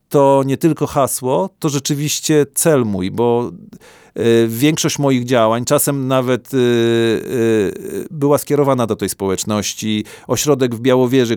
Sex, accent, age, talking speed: male, native, 40-59, 130 wpm